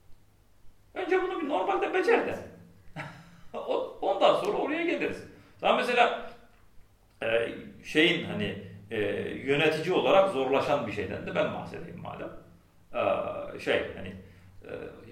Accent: native